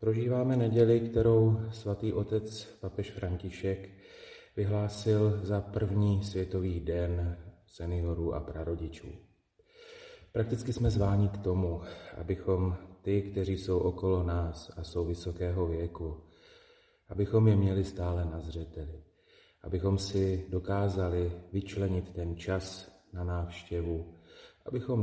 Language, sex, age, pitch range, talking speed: Slovak, male, 30-49, 90-100 Hz, 105 wpm